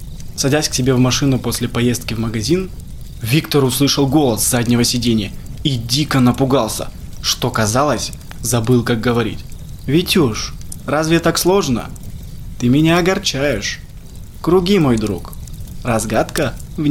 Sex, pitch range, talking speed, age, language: male, 105-130 Hz, 120 wpm, 20-39, Russian